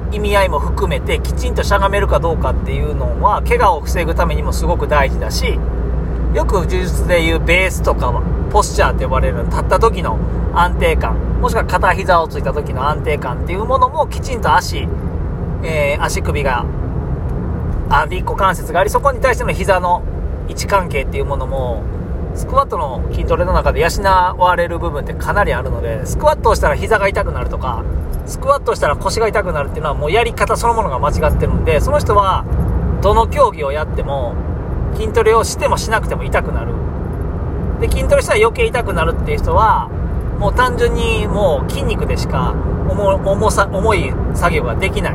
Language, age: Japanese, 40-59